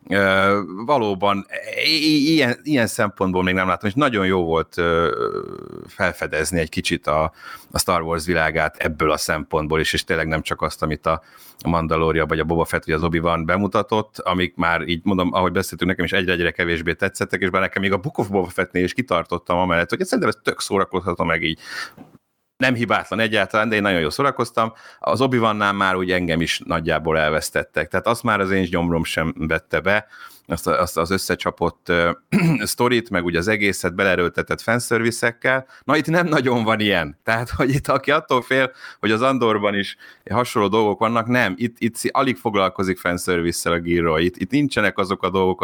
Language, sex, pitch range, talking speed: Hungarian, male, 85-110 Hz, 185 wpm